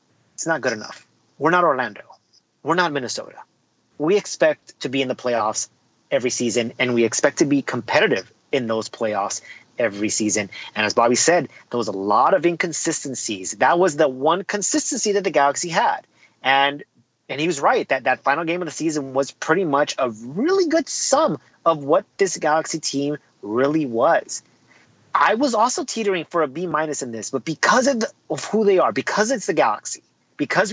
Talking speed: 190 wpm